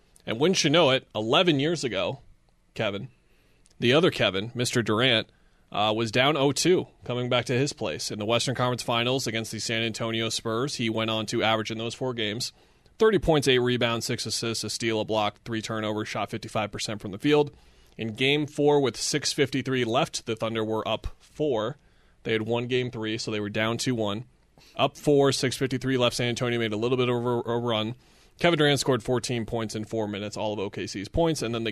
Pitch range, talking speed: 110-130 Hz, 205 wpm